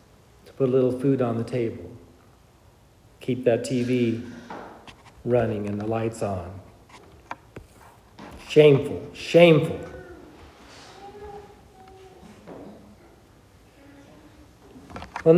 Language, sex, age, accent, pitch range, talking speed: English, male, 50-69, American, 125-175 Hz, 70 wpm